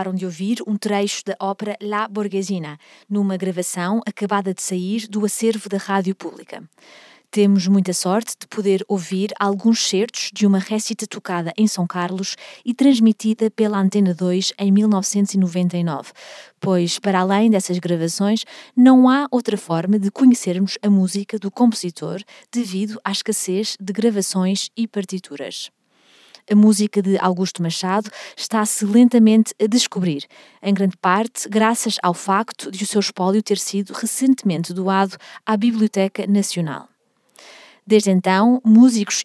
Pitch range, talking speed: 185-220 Hz, 140 wpm